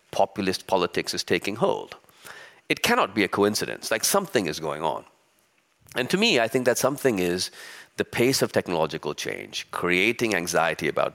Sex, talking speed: male, 165 wpm